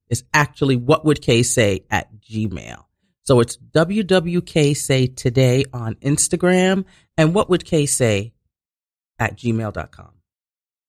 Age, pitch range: 40-59, 115-165 Hz